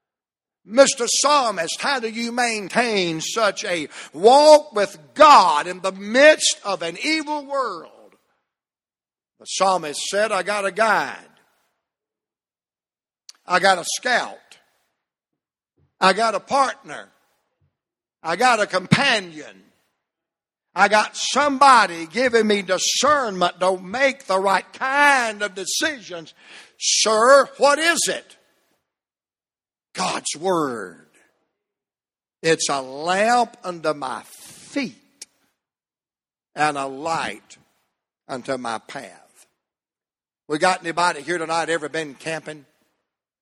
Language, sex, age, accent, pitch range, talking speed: English, male, 60-79, American, 150-235 Hz, 105 wpm